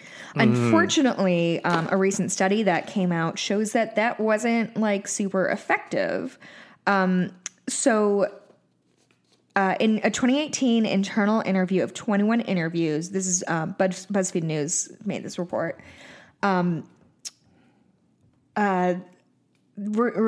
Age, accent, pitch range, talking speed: 10-29, American, 180-215 Hz, 100 wpm